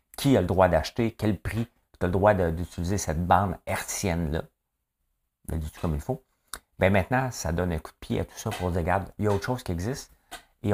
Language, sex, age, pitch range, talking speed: French, male, 50-69, 80-105 Hz, 240 wpm